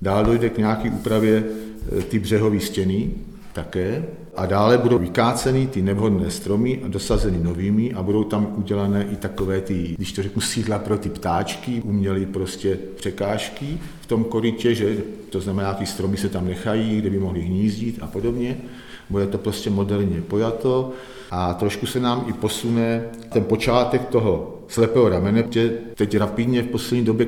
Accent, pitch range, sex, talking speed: native, 100-115 Hz, male, 160 wpm